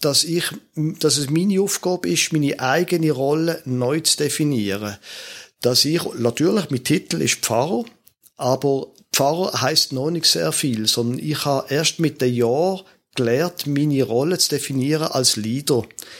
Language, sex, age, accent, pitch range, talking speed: German, male, 50-69, German, 125-160 Hz, 150 wpm